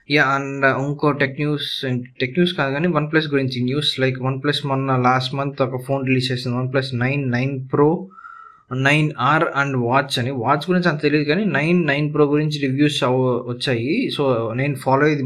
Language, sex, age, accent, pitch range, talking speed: Telugu, male, 20-39, native, 130-145 Hz, 180 wpm